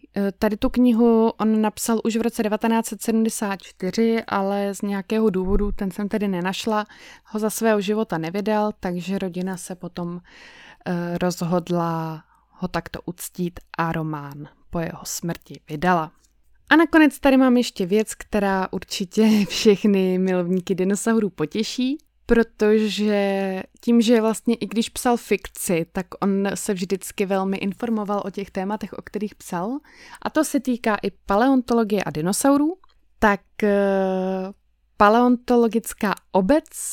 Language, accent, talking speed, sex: Czech, native, 130 wpm, female